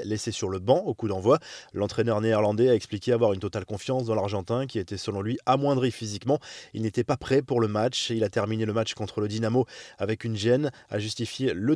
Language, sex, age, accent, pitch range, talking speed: French, male, 20-39, French, 110-140 Hz, 230 wpm